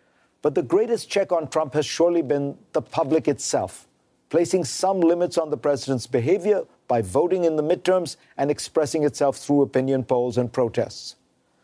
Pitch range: 135-175 Hz